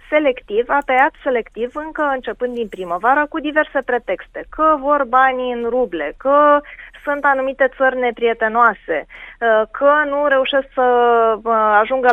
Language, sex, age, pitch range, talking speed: Romanian, female, 20-39, 225-285 Hz, 130 wpm